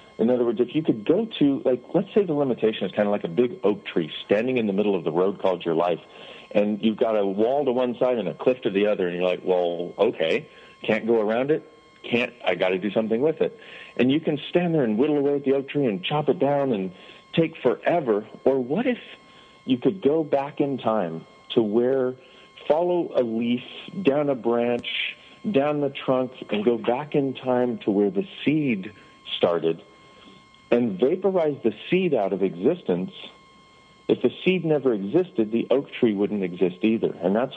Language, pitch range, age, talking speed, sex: English, 105-140 Hz, 50-69, 210 wpm, male